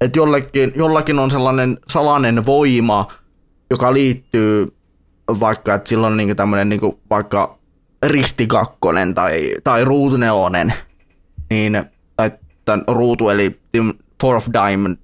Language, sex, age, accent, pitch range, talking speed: Finnish, male, 20-39, native, 100-140 Hz, 95 wpm